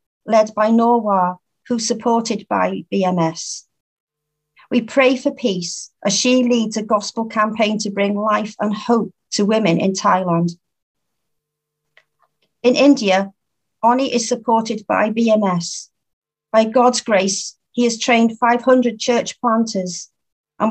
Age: 40-59